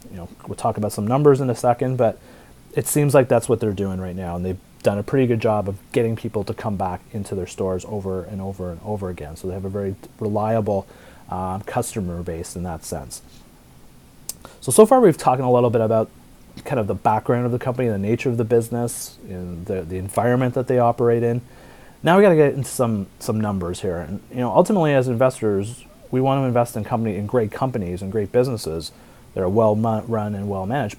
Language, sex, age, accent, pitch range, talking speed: English, male, 30-49, American, 95-125 Hz, 225 wpm